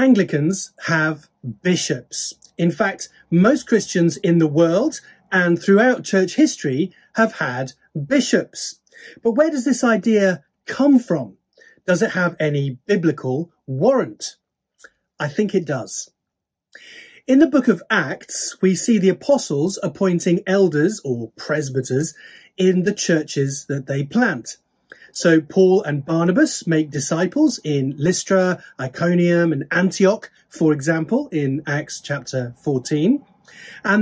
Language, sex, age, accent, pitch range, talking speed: English, male, 30-49, British, 155-220 Hz, 125 wpm